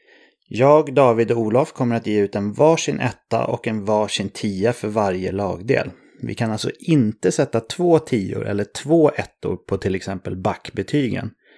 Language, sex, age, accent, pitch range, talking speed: English, male, 30-49, Swedish, 100-130 Hz, 165 wpm